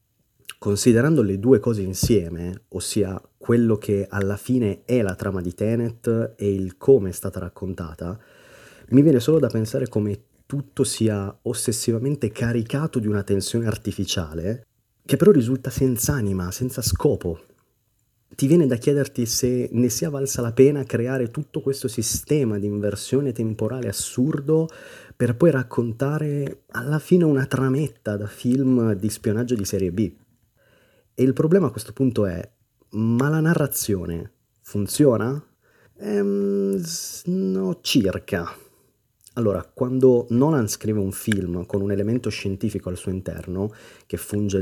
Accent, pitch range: native, 100-130 Hz